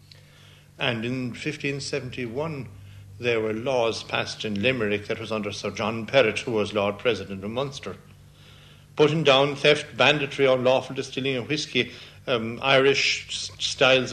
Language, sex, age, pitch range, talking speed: English, male, 60-79, 115-145 Hz, 135 wpm